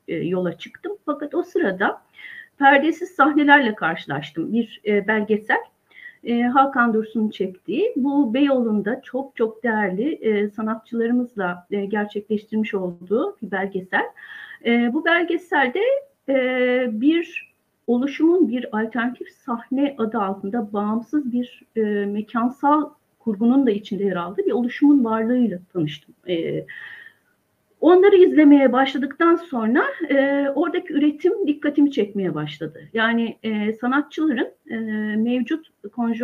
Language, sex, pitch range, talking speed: Turkish, female, 215-295 Hz, 110 wpm